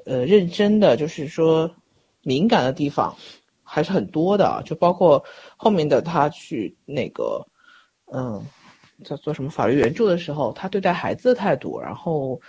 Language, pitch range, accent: Chinese, 150-205 Hz, native